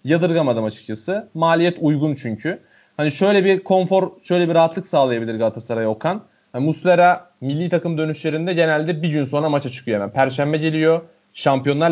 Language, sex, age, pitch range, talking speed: Turkish, male, 30-49, 130-170 Hz, 150 wpm